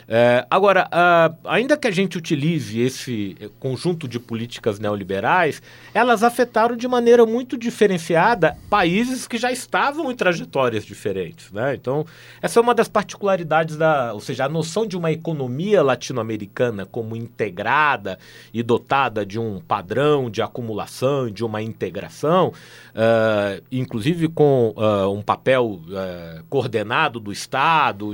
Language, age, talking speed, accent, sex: Portuguese, 40-59, 125 wpm, Brazilian, male